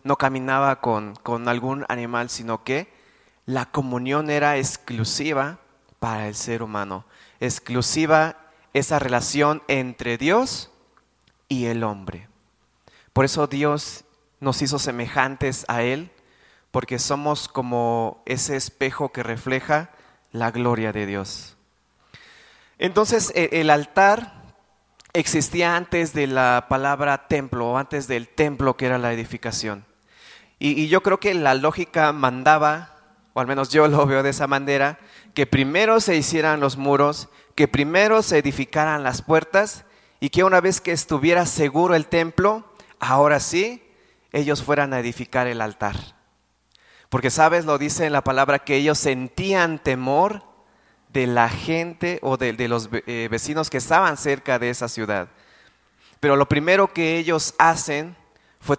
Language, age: Spanish, 30-49